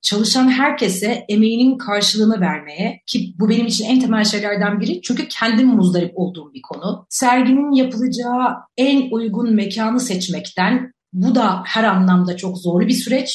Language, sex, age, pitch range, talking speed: Turkish, female, 40-59, 190-245 Hz, 150 wpm